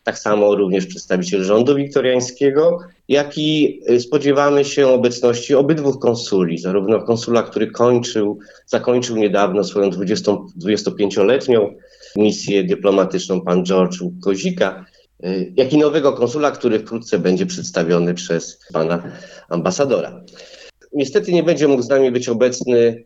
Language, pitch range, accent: Polish, 95-120 Hz, native